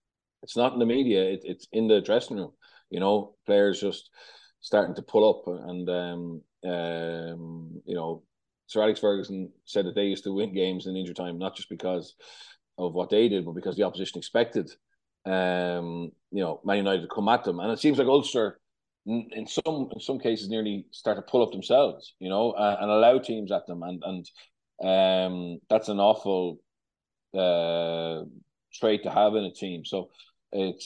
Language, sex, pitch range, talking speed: English, male, 90-100 Hz, 190 wpm